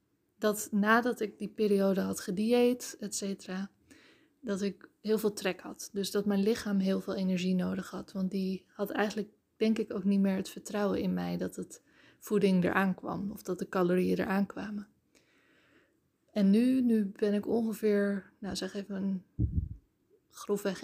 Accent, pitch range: Dutch, 195-225 Hz